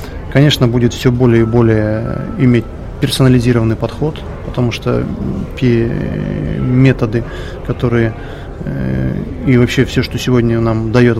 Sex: male